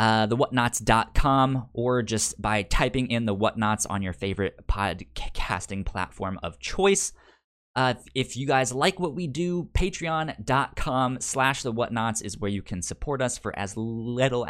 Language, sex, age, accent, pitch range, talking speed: English, male, 20-39, American, 100-130 Hz, 155 wpm